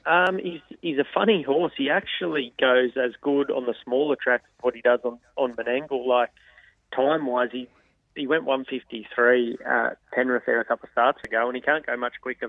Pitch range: 115-125 Hz